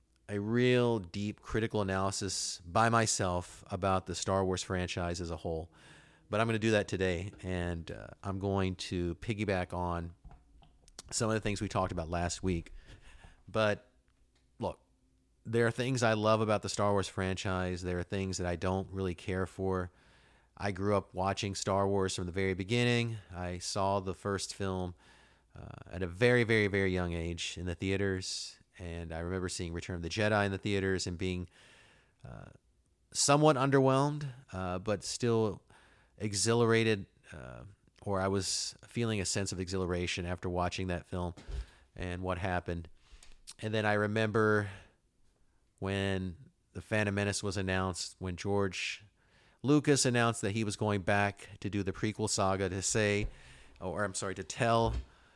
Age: 30-49